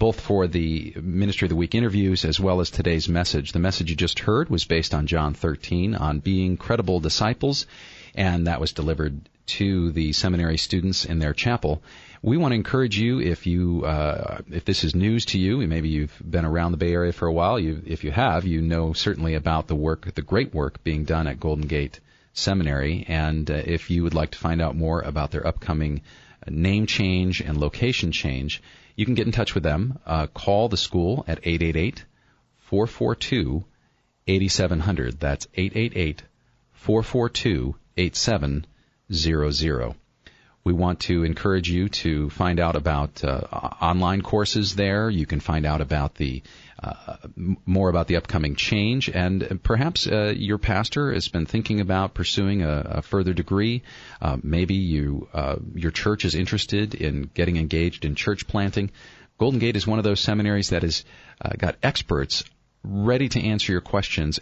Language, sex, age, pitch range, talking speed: English, male, 40-59, 80-100 Hz, 170 wpm